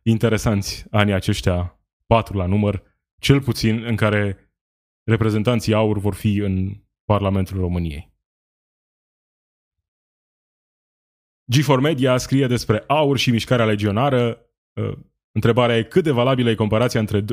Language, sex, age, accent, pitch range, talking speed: Romanian, male, 20-39, native, 100-125 Hz, 115 wpm